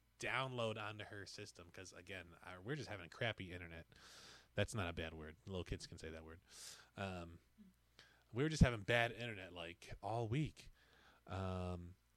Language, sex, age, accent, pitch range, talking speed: English, male, 20-39, American, 85-115 Hz, 175 wpm